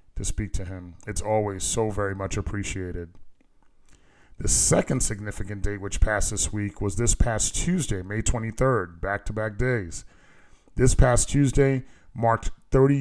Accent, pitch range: American, 100-120 Hz